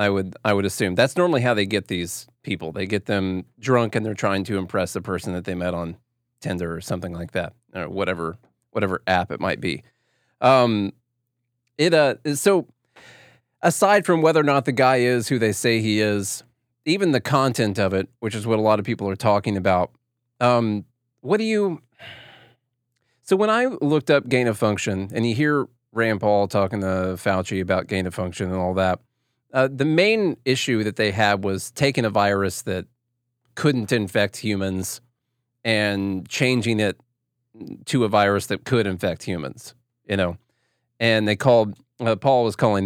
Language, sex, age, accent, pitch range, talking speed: English, male, 30-49, American, 100-125 Hz, 185 wpm